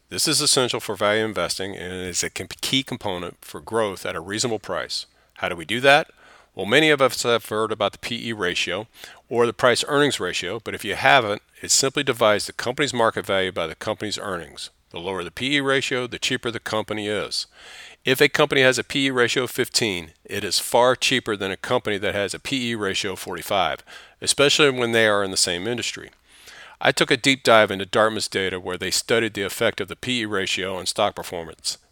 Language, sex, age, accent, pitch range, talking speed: English, male, 40-59, American, 105-135 Hz, 210 wpm